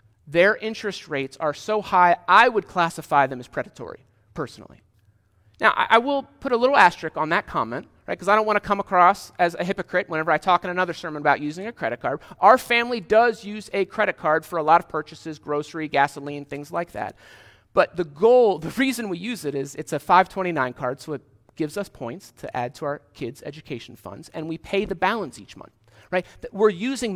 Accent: American